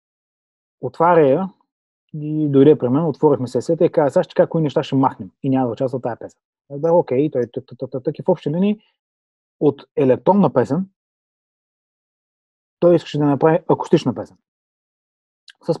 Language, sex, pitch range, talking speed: Bulgarian, male, 130-155 Hz, 150 wpm